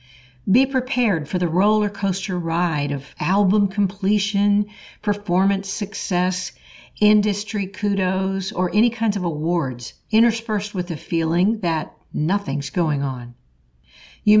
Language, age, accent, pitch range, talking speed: English, 60-79, American, 160-210 Hz, 115 wpm